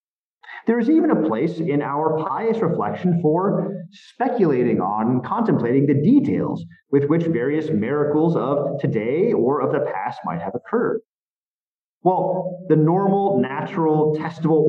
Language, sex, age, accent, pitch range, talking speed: English, male, 30-49, American, 145-190 Hz, 140 wpm